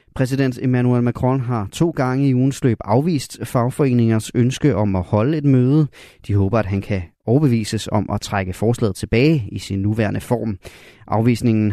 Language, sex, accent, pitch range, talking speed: Danish, male, native, 105-130 Hz, 165 wpm